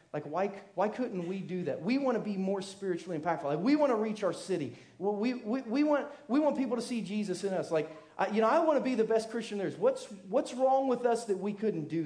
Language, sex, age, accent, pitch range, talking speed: English, male, 40-59, American, 150-195 Hz, 275 wpm